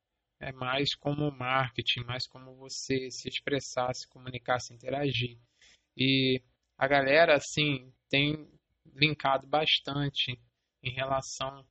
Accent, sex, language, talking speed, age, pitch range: Brazilian, male, English, 115 wpm, 20-39, 120-135 Hz